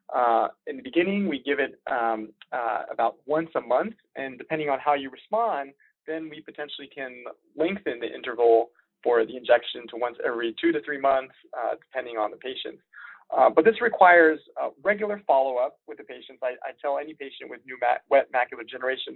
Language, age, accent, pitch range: English, 20-39, American, 120-165 Hz